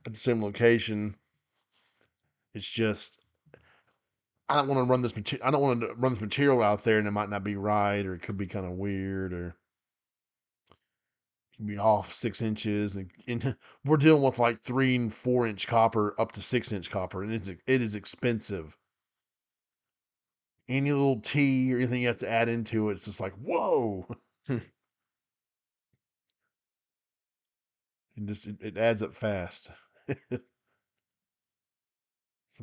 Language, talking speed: English, 155 wpm